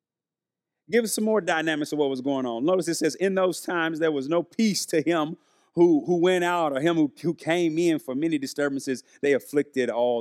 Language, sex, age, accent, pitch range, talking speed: English, male, 40-59, American, 150-215 Hz, 225 wpm